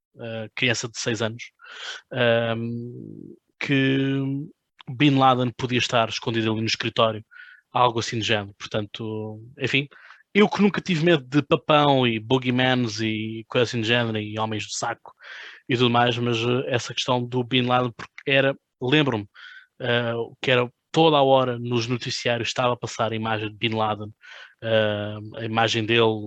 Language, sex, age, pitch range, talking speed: Portuguese, male, 20-39, 115-135 Hz, 155 wpm